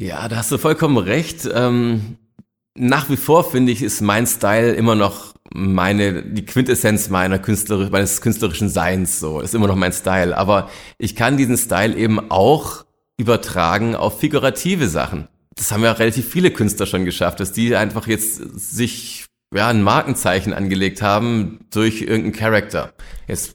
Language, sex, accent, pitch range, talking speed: German, male, German, 95-120 Hz, 165 wpm